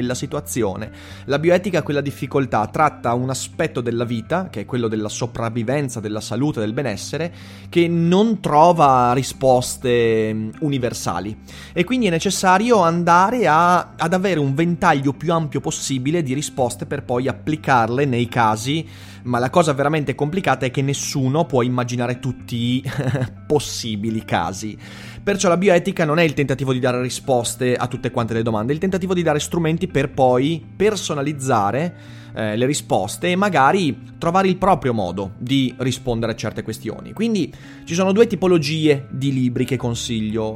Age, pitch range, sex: 30-49, 120-165 Hz, male